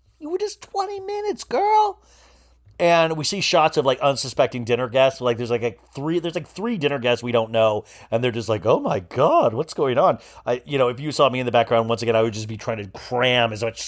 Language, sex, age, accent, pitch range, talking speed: English, male, 40-59, American, 115-180 Hz, 255 wpm